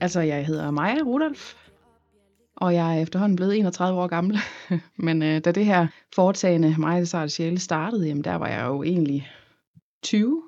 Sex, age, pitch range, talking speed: female, 20-39, 155-185 Hz, 165 wpm